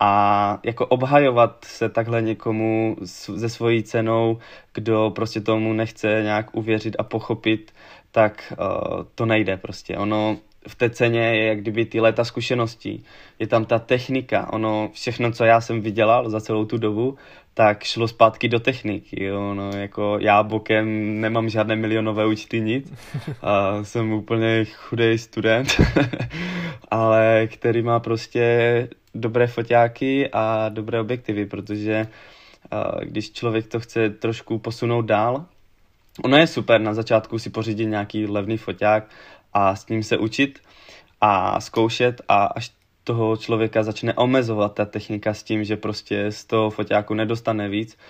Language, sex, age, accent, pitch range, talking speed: Czech, male, 20-39, native, 105-115 Hz, 145 wpm